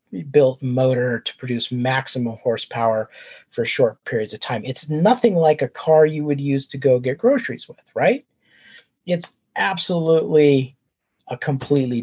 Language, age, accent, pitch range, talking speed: English, 40-59, American, 125-160 Hz, 145 wpm